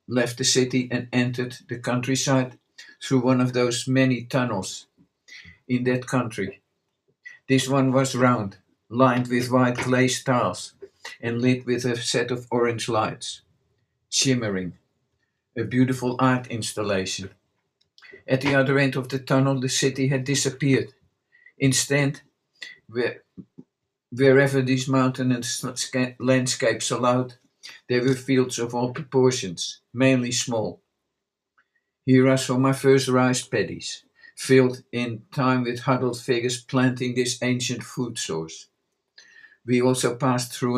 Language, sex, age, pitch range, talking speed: English, male, 50-69, 120-130 Hz, 125 wpm